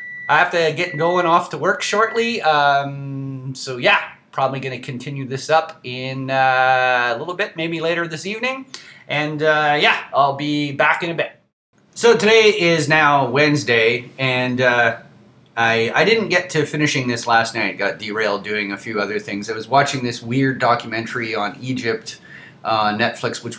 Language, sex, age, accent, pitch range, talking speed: English, male, 30-49, American, 120-155 Hz, 180 wpm